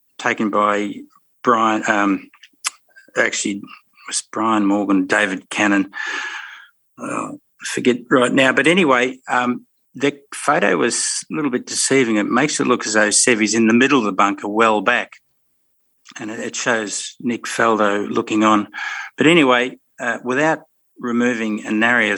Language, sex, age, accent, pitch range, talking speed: English, male, 50-69, Australian, 105-125 Hz, 150 wpm